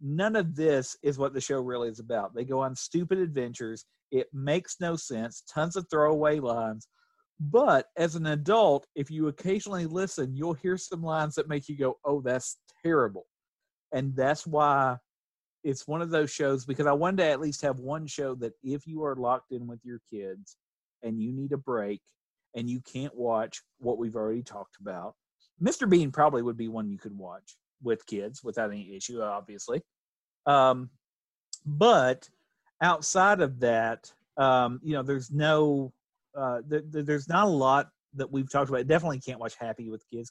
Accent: American